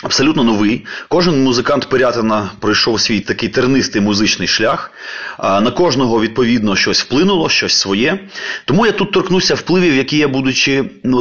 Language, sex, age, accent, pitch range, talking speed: Ukrainian, male, 30-49, native, 100-125 Hz, 145 wpm